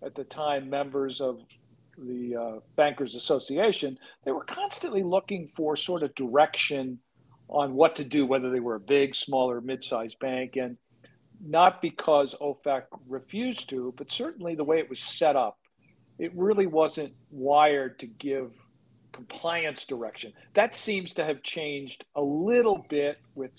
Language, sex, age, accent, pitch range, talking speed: English, male, 50-69, American, 130-160 Hz, 155 wpm